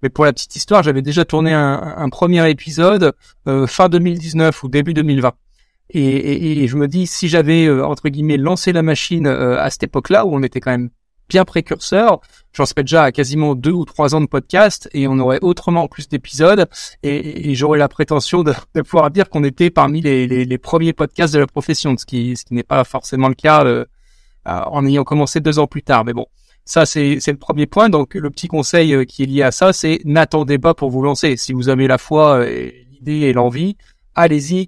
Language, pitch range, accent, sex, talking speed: French, 135-160 Hz, French, male, 220 wpm